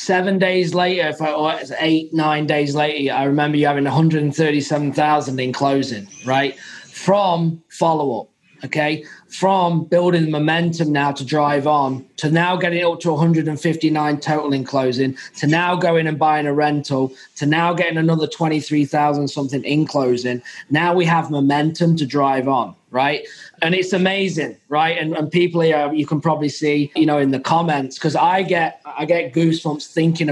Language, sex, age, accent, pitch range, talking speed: English, male, 20-39, British, 150-185 Hz, 170 wpm